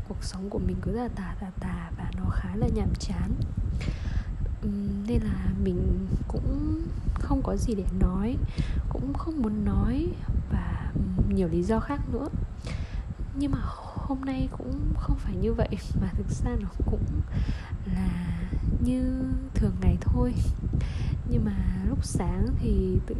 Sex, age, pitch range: female, 10-29, 85-105 Hz